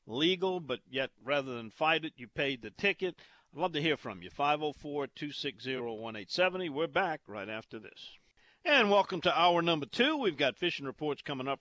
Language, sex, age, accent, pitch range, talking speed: English, male, 50-69, American, 120-145 Hz, 180 wpm